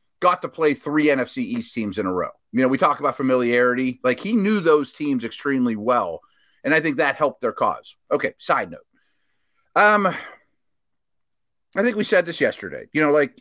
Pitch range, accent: 125-200 Hz, American